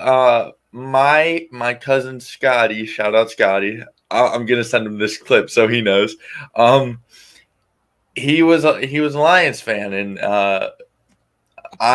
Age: 20-39